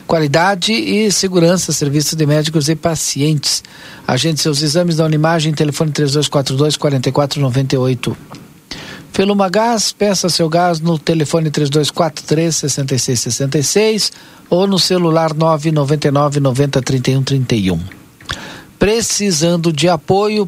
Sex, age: male, 50-69